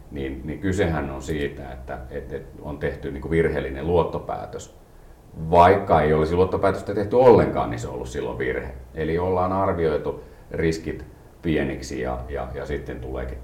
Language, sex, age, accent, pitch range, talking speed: Finnish, male, 40-59, native, 65-80 Hz, 145 wpm